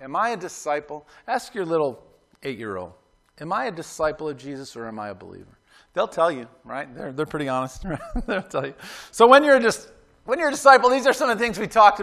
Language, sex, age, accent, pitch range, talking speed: English, male, 40-59, American, 155-195 Hz, 220 wpm